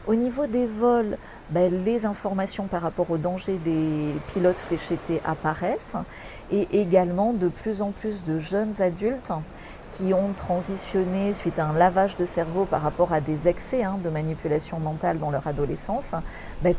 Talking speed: 165 wpm